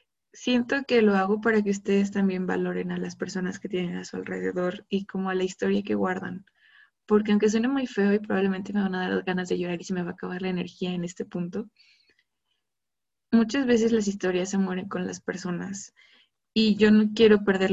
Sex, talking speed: female, 215 wpm